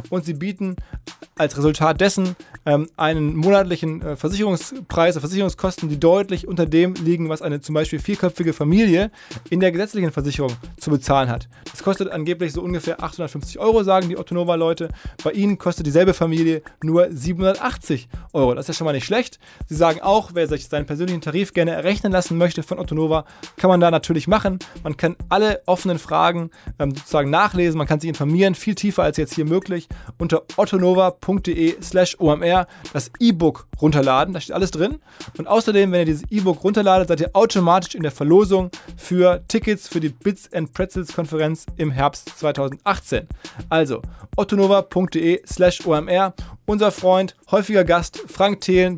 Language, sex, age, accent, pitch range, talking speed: German, male, 20-39, German, 160-190 Hz, 170 wpm